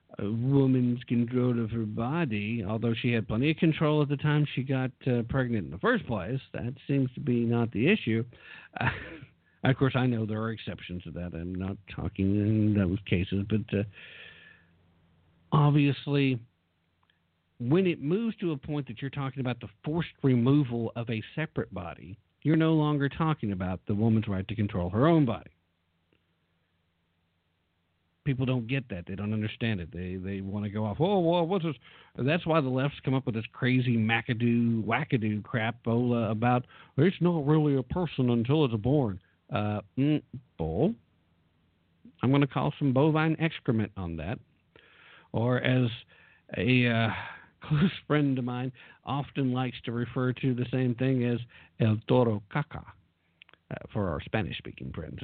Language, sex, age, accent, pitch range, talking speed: English, male, 50-69, American, 100-135 Hz, 170 wpm